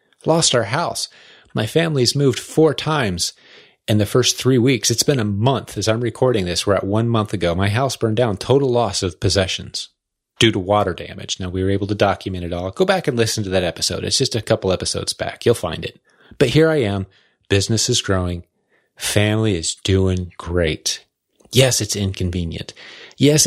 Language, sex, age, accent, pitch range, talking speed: English, male, 30-49, American, 95-120 Hz, 195 wpm